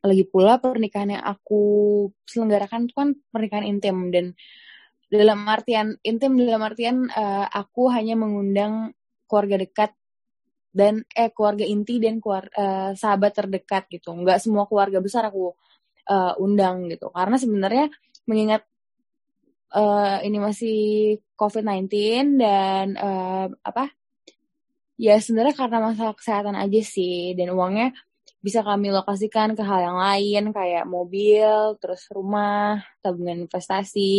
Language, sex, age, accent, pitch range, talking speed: Indonesian, female, 20-39, native, 195-225 Hz, 125 wpm